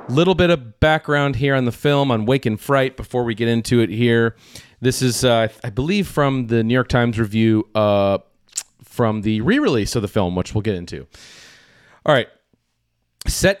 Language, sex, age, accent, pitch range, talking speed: English, male, 30-49, American, 110-140 Hz, 190 wpm